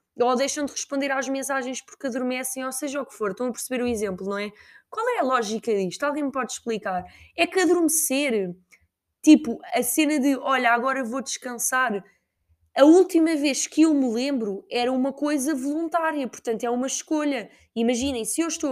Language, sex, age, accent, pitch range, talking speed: Portuguese, female, 20-39, Brazilian, 225-300 Hz, 190 wpm